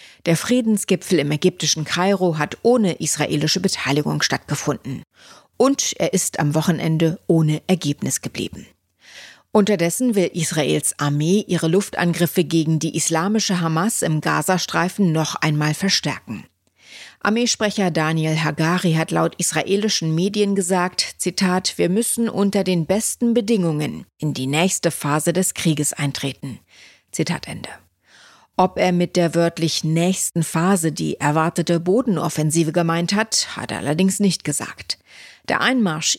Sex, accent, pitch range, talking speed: female, German, 160-195 Hz, 125 wpm